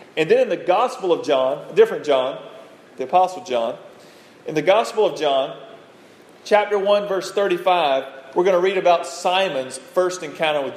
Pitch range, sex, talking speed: 150-205 Hz, male, 175 wpm